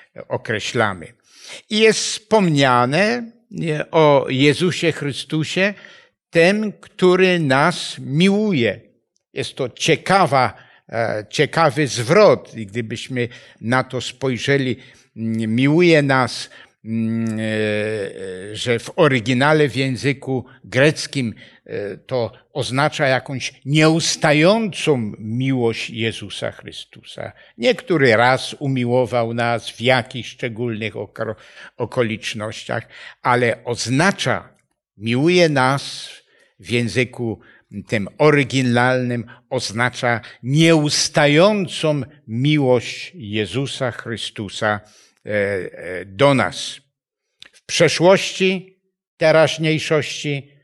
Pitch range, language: 115-150 Hz, Polish